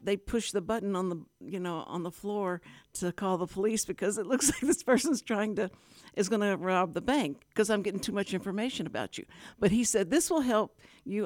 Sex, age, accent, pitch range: female, 60-79, American, 185-240 Hz